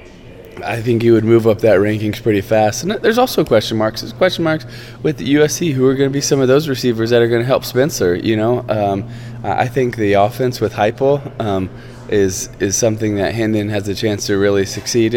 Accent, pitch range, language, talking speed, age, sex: American, 100-120 Hz, English, 225 wpm, 20-39, male